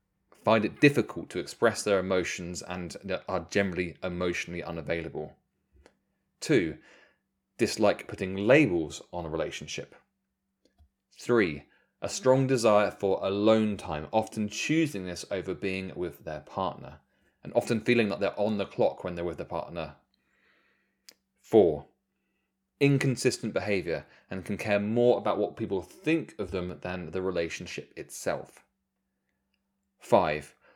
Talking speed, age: 130 wpm, 20-39